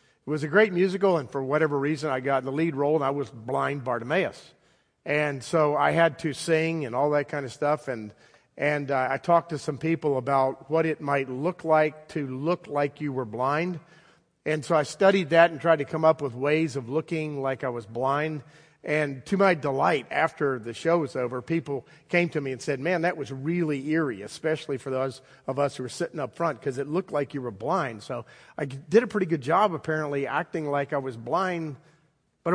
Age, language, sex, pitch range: 50-69, English, male, 140-170 Hz